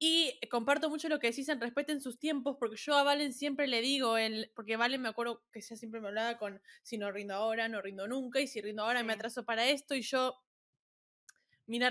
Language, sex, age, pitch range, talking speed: Spanish, female, 10-29, 230-290 Hz, 230 wpm